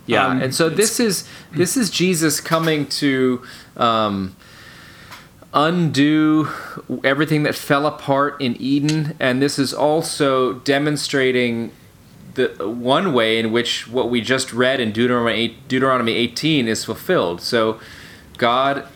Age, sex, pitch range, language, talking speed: 30-49, male, 110-145 Hz, English, 125 wpm